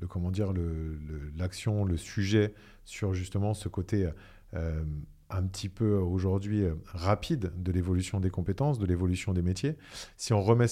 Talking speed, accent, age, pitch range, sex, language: 170 wpm, French, 40-59, 95-115 Hz, male, French